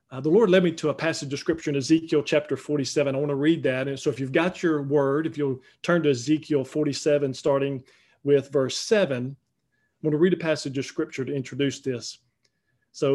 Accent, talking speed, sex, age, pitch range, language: American, 220 wpm, male, 40-59, 135-170 Hz, English